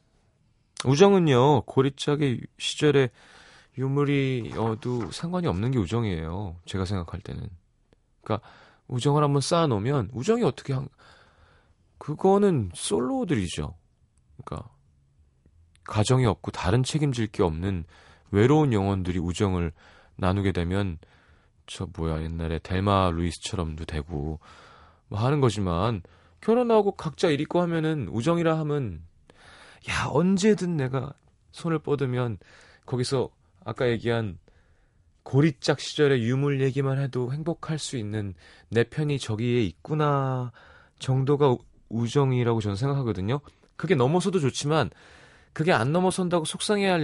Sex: male